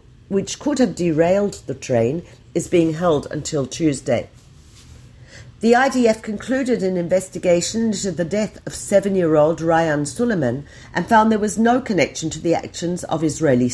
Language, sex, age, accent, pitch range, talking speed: Hebrew, female, 50-69, British, 145-210 Hz, 155 wpm